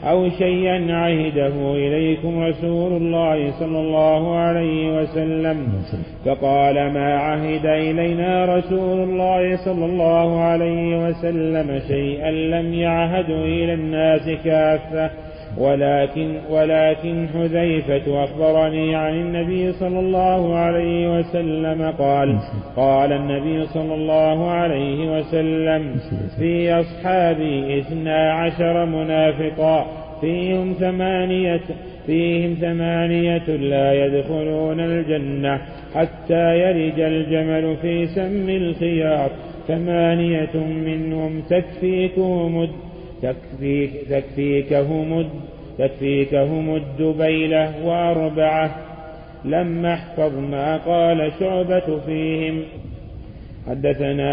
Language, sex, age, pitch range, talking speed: Arabic, male, 40-59, 155-170 Hz, 85 wpm